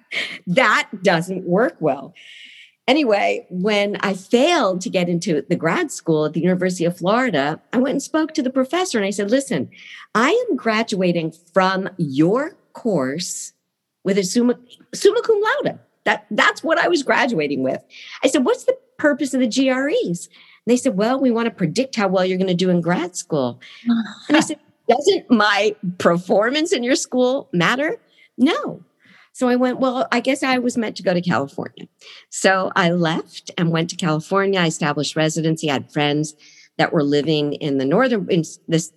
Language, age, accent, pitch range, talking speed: English, 50-69, American, 150-240 Hz, 180 wpm